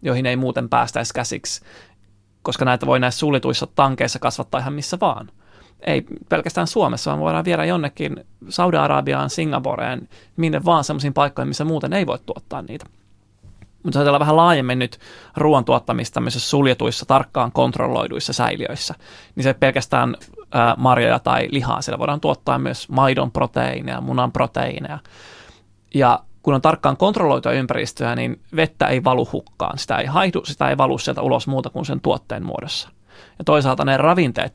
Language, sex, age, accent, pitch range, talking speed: Finnish, male, 20-39, native, 100-150 Hz, 155 wpm